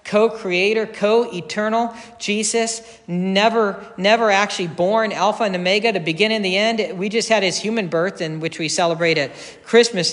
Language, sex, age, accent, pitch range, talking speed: English, male, 50-69, American, 155-200 Hz, 160 wpm